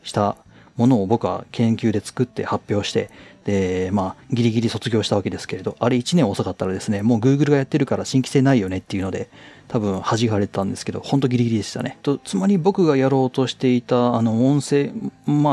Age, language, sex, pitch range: 30-49, Japanese, male, 105-155 Hz